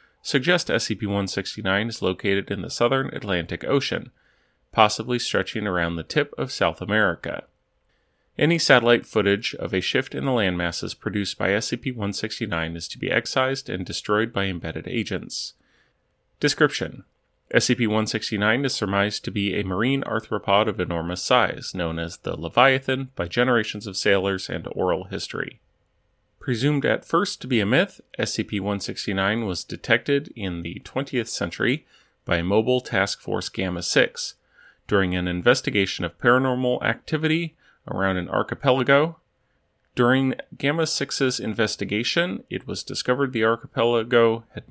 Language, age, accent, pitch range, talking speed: English, 30-49, American, 95-125 Hz, 130 wpm